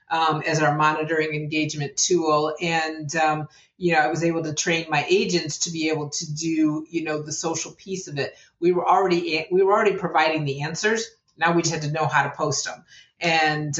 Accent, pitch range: American, 150-170 Hz